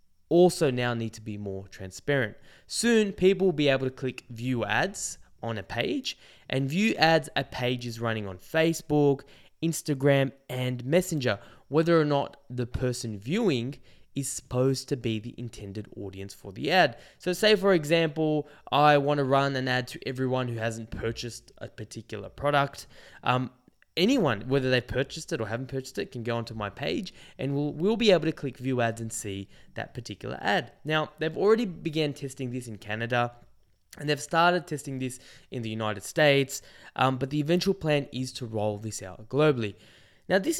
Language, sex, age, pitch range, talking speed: English, male, 10-29, 115-155 Hz, 180 wpm